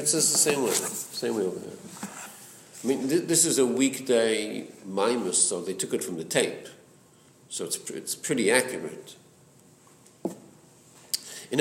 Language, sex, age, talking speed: English, male, 50-69, 160 wpm